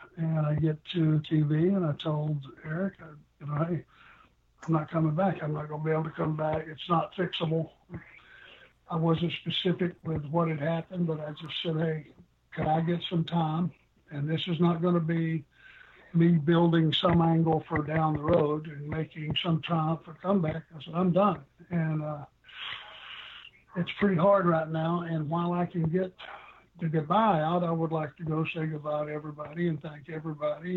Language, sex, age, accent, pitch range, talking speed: English, male, 60-79, American, 155-170 Hz, 190 wpm